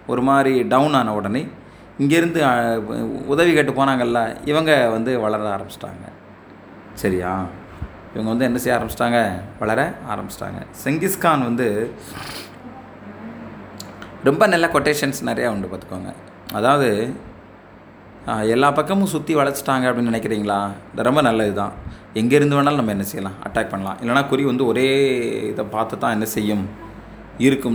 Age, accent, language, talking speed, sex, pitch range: 20-39, native, Tamil, 120 wpm, male, 105-135 Hz